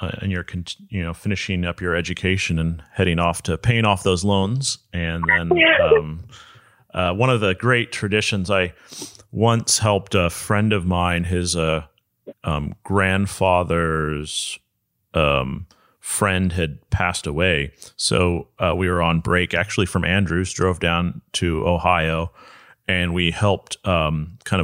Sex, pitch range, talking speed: male, 85-100 Hz, 145 wpm